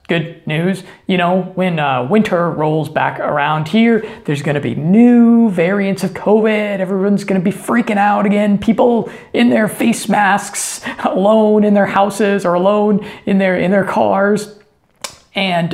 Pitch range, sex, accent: 175-220 Hz, male, American